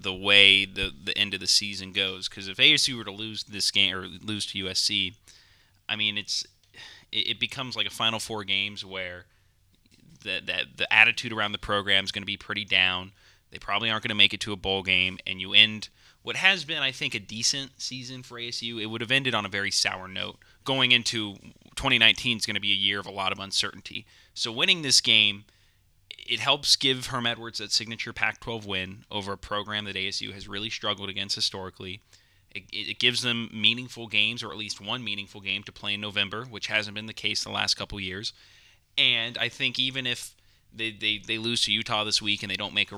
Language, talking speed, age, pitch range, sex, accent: English, 220 wpm, 20-39, 100-120 Hz, male, American